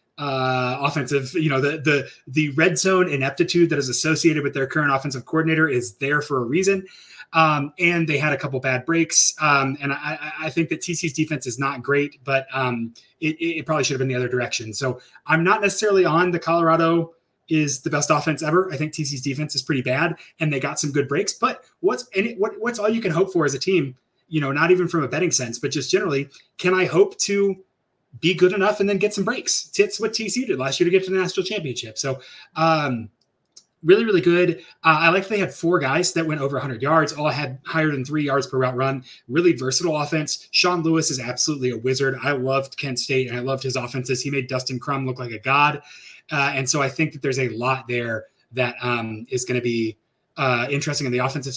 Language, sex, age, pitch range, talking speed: English, male, 30-49, 130-165 Hz, 235 wpm